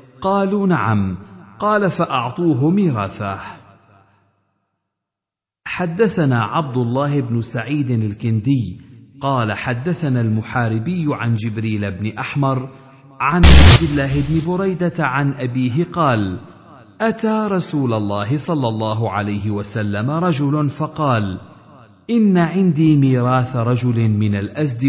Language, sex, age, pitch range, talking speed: Arabic, male, 50-69, 110-155 Hz, 100 wpm